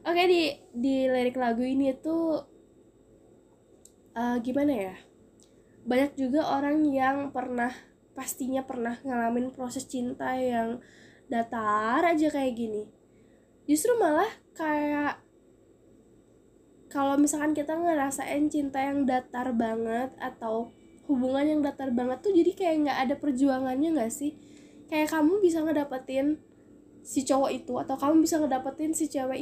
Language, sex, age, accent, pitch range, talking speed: Indonesian, female, 10-29, native, 260-315 Hz, 125 wpm